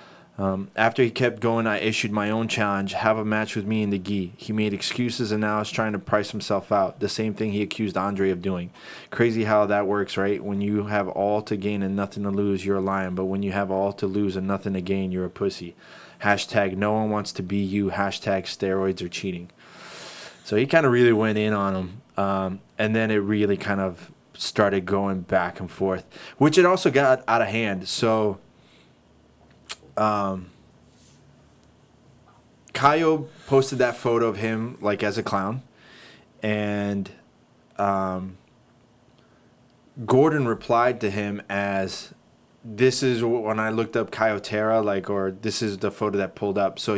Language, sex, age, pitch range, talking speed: English, male, 20-39, 100-110 Hz, 185 wpm